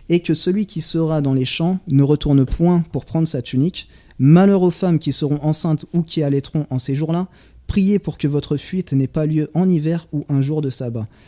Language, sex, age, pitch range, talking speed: French, male, 20-39, 135-170 Hz, 225 wpm